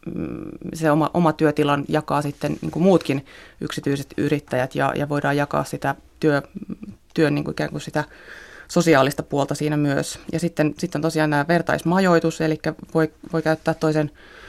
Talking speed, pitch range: 155 wpm, 150-165 Hz